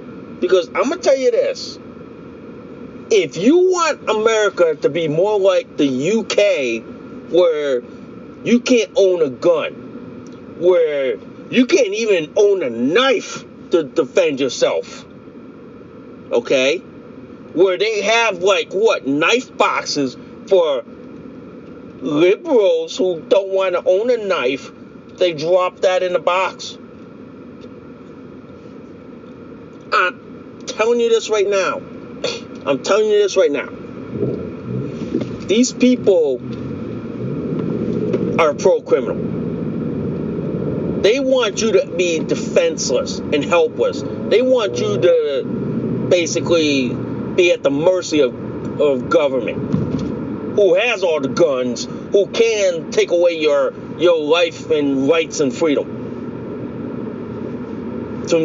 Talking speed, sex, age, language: 110 wpm, male, 40-59, English